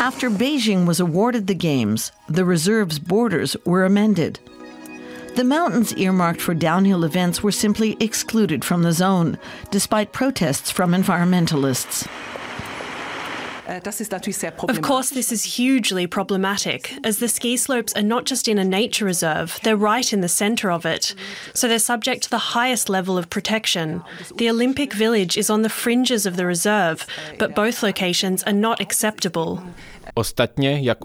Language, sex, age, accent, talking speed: English, female, 40-59, Australian, 150 wpm